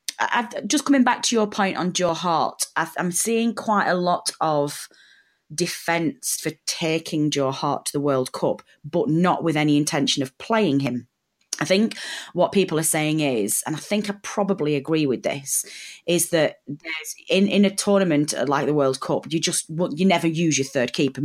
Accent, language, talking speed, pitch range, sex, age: British, English, 185 wpm, 140-175 Hz, female, 30-49